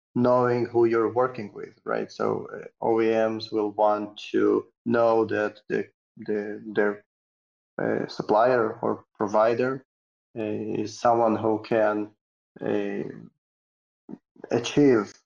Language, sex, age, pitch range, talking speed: English, male, 30-49, 105-120 Hz, 110 wpm